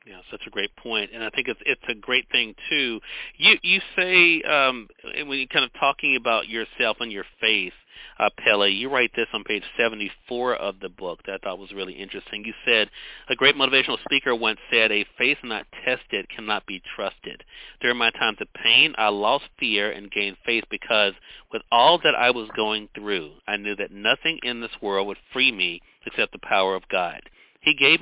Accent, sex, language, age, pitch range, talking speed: American, male, English, 40-59, 100-130 Hz, 205 wpm